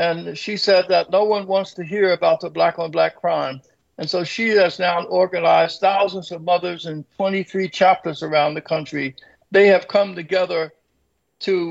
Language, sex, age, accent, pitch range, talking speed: English, male, 60-79, American, 165-195 Hz, 170 wpm